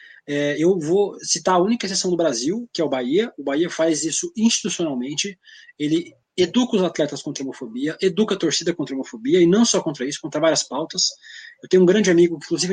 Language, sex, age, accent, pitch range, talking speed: Portuguese, male, 20-39, Brazilian, 140-195 Hz, 210 wpm